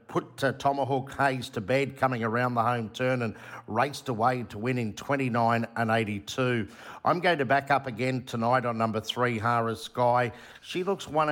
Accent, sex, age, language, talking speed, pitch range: Australian, male, 50-69, English, 185 wpm, 115-140 Hz